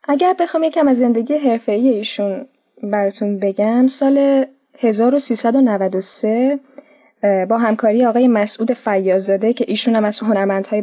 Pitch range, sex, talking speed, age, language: 210-270 Hz, female, 110 wpm, 10-29, Persian